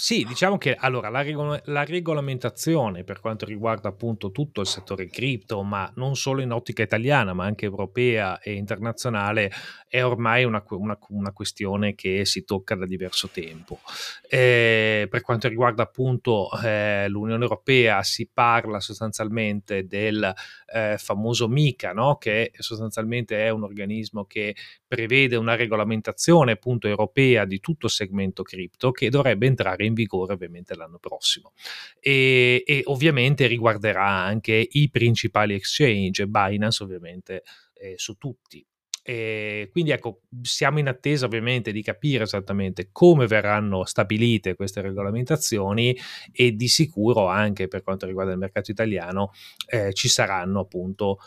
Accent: native